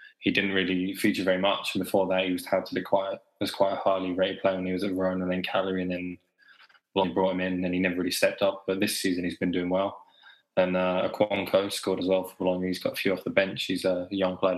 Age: 20-39